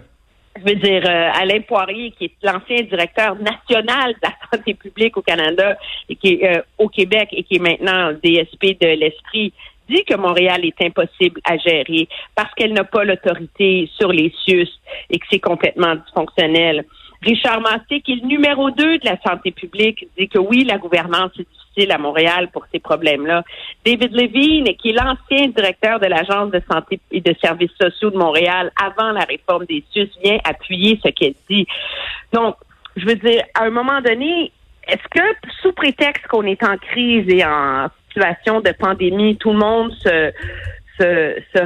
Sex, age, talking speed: female, 50-69, 175 wpm